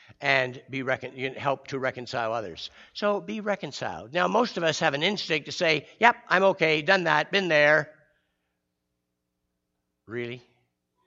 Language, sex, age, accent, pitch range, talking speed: English, male, 60-79, American, 135-175 Hz, 145 wpm